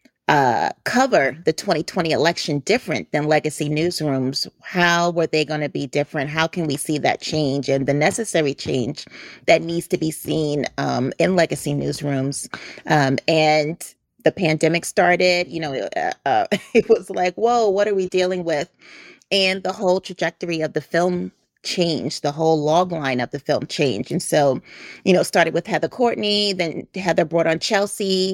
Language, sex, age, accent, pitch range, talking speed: English, female, 30-49, American, 150-180 Hz, 175 wpm